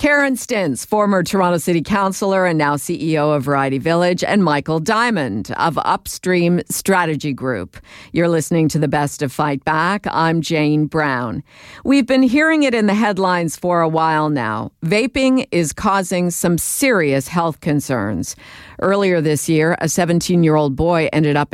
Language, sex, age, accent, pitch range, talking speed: English, female, 50-69, American, 150-195 Hz, 160 wpm